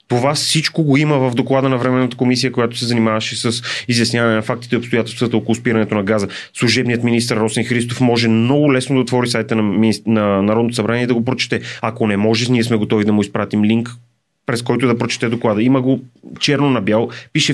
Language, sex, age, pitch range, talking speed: Bulgarian, male, 30-49, 115-140 Hz, 210 wpm